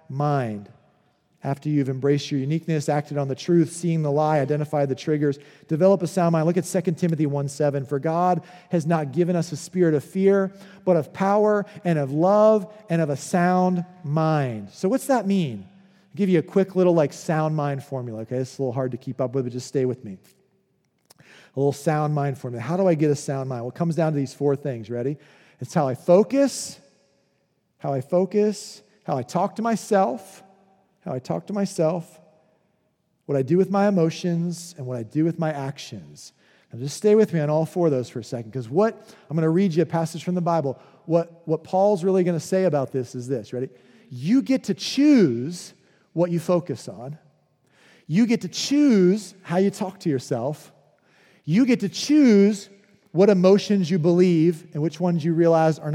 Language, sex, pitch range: English, male, 145-190 Hz